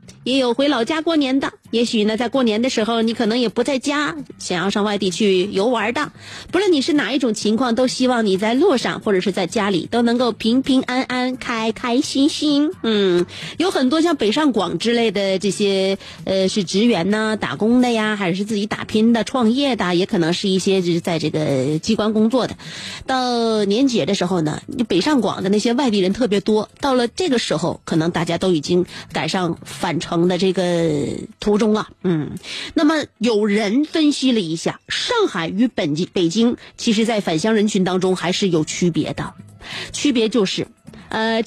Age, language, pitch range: 30-49, Chinese, 190-260 Hz